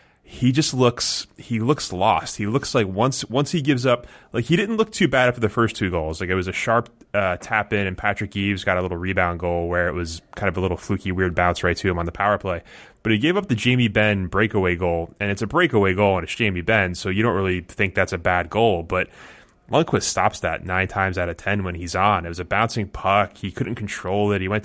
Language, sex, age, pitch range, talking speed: English, male, 20-39, 95-110 Hz, 265 wpm